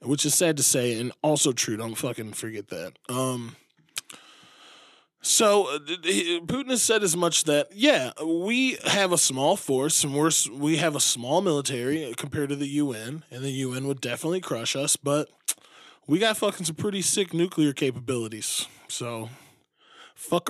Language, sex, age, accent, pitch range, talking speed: English, male, 20-39, American, 135-180 Hz, 160 wpm